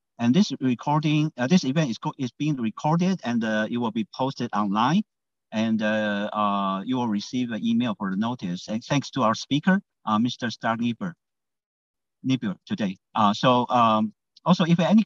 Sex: male